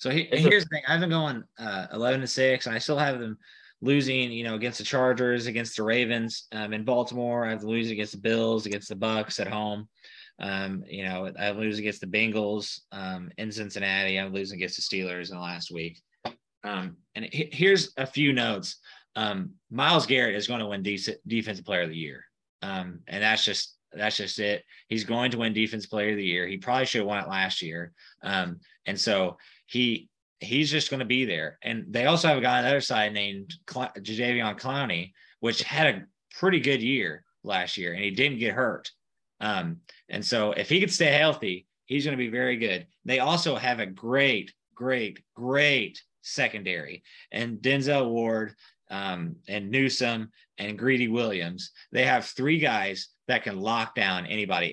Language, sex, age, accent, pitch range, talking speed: English, male, 20-39, American, 105-130 Hz, 195 wpm